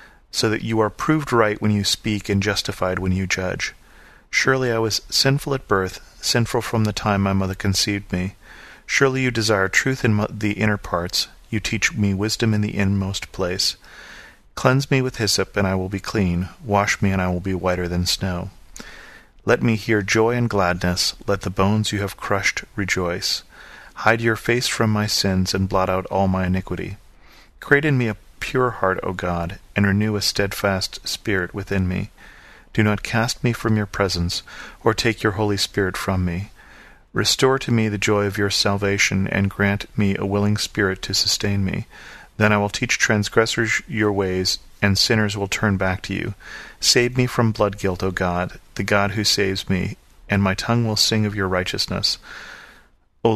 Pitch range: 95-110 Hz